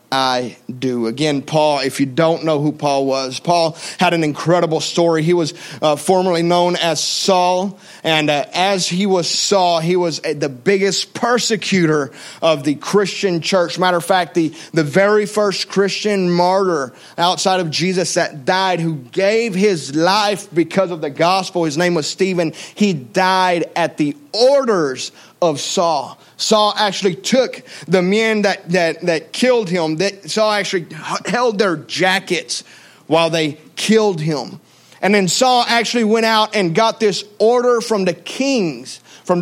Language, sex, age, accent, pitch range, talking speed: English, male, 30-49, American, 165-205 Hz, 160 wpm